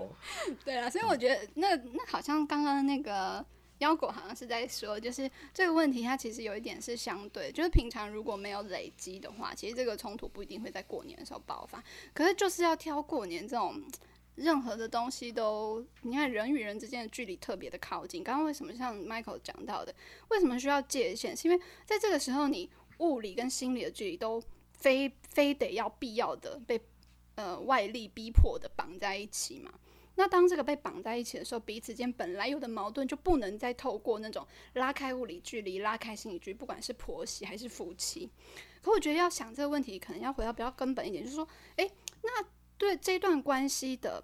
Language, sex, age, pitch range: Chinese, female, 10-29, 230-325 Hz